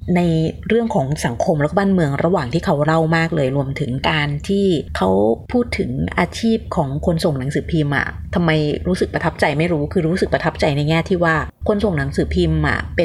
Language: Thai